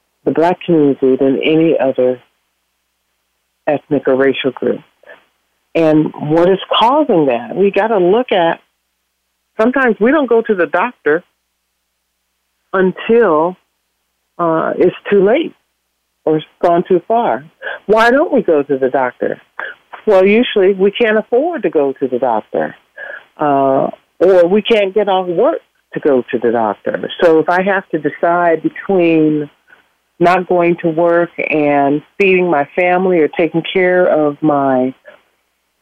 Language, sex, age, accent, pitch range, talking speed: English, female, 50-69, American, 145-190 Hz, 145 wpm